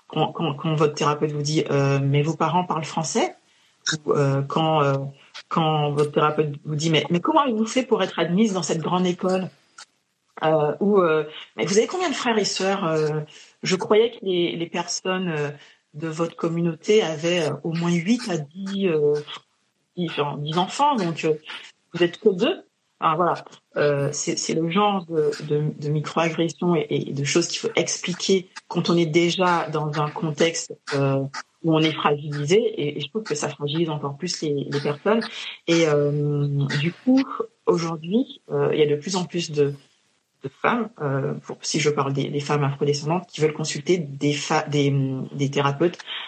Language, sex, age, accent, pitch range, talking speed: French, female, 40-59, French, 145-180 Hz, 190 wpm